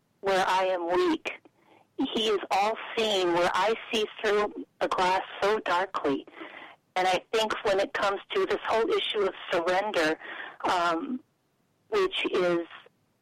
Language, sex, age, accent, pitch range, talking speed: English, female, 50-69, American, 175-245 Hz, 140 wpm